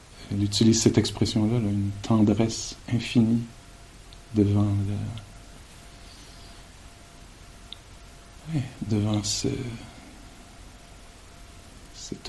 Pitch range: 100-115 Hz